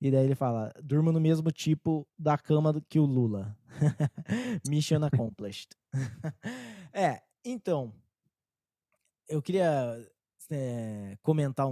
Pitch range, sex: 130-165 Hz, male